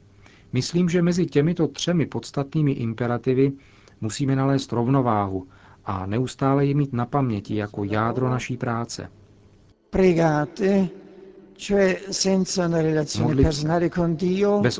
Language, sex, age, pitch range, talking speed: Czech, male, 50-69, 105-135 Hz, 85 wpm